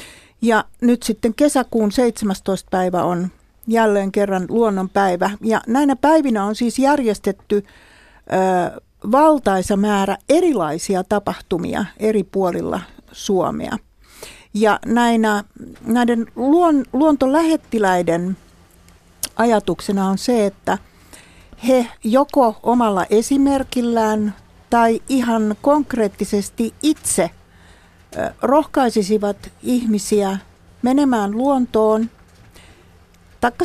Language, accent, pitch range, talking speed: Finnish, native, 195-245 Hz, 75 wpm